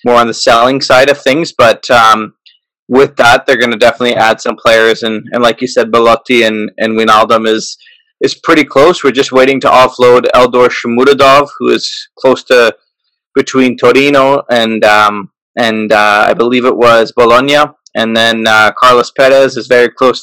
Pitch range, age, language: 115-140 Hz, 20-39, English